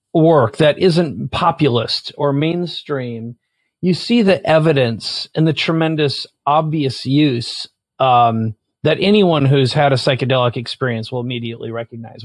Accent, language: American, English